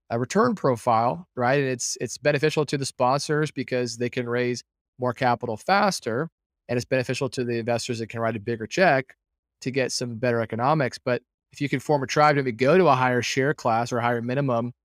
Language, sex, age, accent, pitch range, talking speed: English, male, 30-49, American, 120-140 Hz, 215 wpm